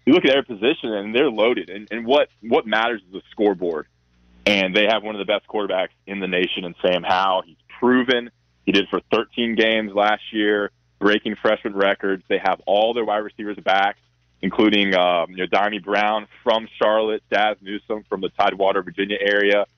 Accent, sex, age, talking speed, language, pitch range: American, male, 20-39, 195 wpm, English, 95-110 Hz